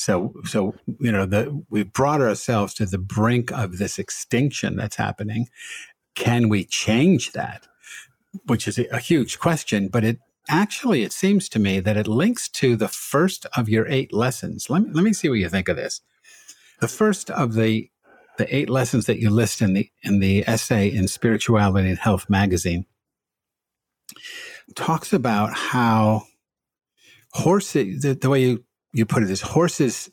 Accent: American